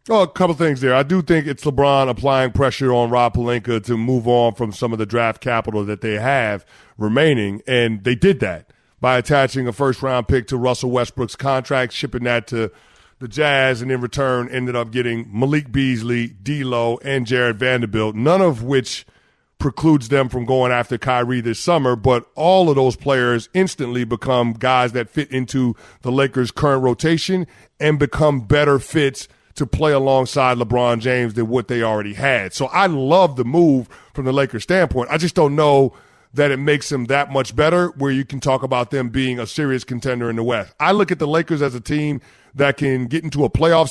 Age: 40-59